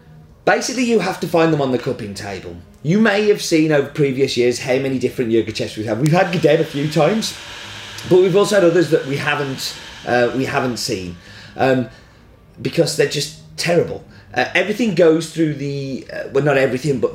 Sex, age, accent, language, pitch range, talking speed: male, 30-49, British, English, 120-160 Hz, 200 wpm